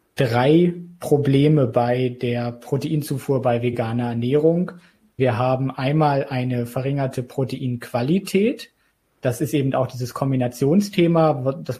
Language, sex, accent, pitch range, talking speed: German, male, German, 125-145 Hz, 105 wpm